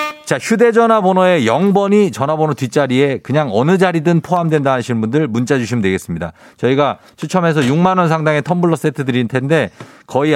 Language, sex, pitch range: Korean, male, 120-175 Hz